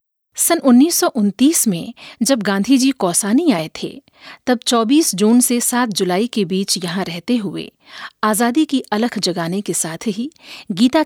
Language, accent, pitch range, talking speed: Hindi, native, 205-275 Hz, 150 wpm